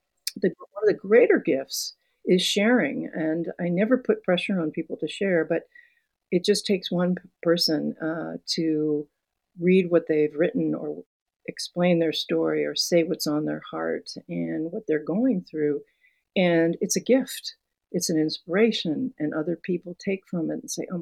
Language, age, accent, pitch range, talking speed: English, 50-69, American, 155-195 Hz, 170 wpm